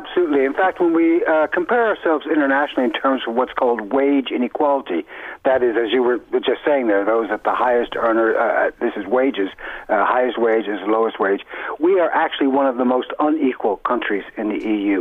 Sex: male